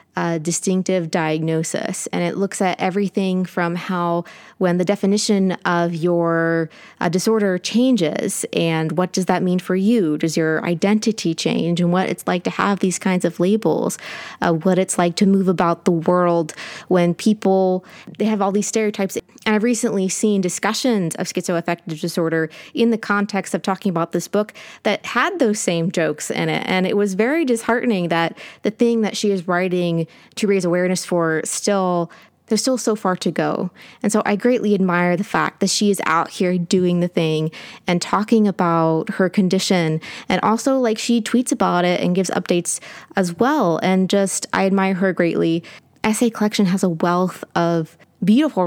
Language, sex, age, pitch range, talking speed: English, female, 20-39, 175-210 Hz, 180 wpm